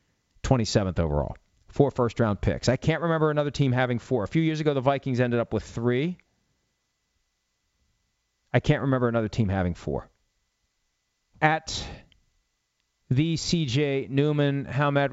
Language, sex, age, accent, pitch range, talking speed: English, male, 40-59, American, 115-155 Hz, 140 wpm